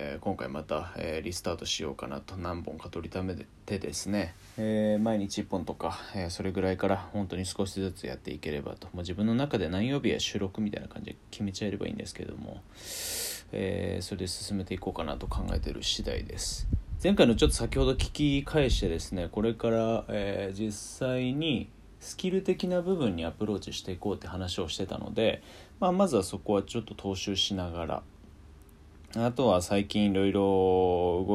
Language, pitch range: Japanese, 90-110 Hz